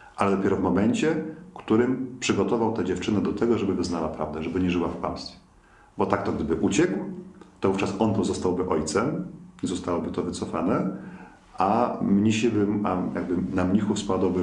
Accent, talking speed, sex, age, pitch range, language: native, 160 wpm, male, 40-59, 85-100 Hz, Polish